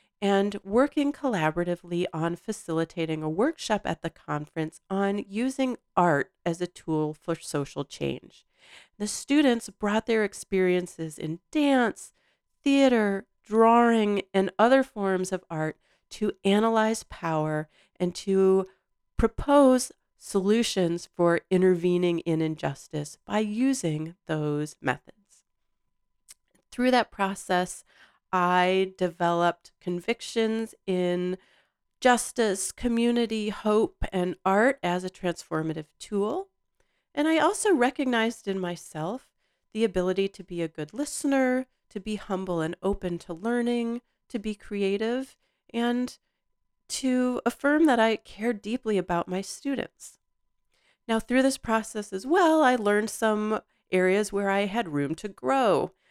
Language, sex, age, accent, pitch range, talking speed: English, female, 40-59, American, 175-235 Hz, 120 wpm